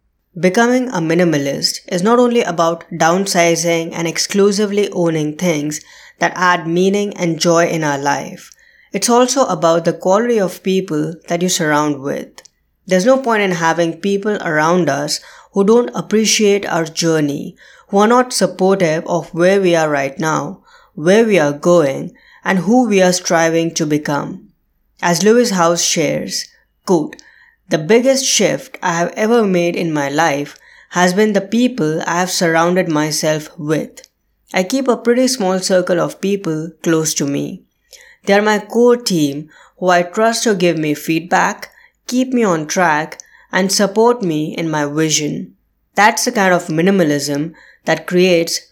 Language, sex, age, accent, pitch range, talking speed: English, female, 20-39, Indian, 160-200 Hz, 160 wpm